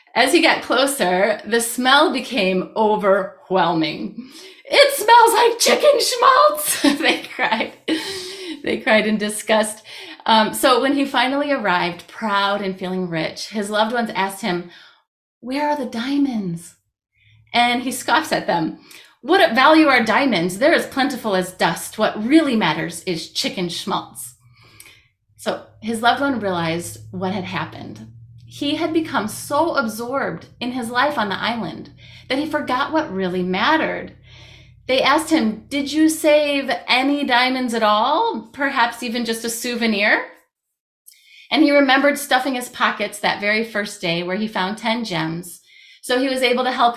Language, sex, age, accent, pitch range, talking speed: English, female, 30-49, American, 185-280 Hz, 150 wpm